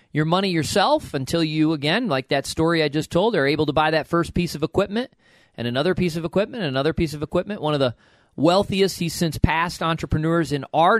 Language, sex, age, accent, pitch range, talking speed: English, male, 40-59, American, 140-180 Hz, 225 wpm